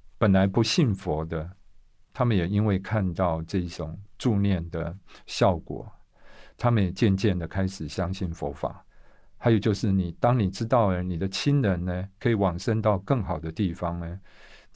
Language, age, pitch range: Chinese, 50-69, 85-105 Hz